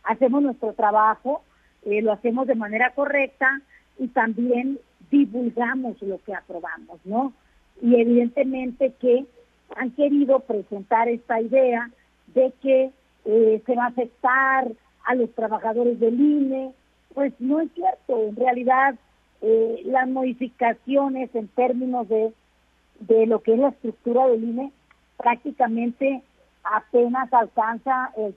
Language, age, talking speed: Spanish, 50-69, 125 wpm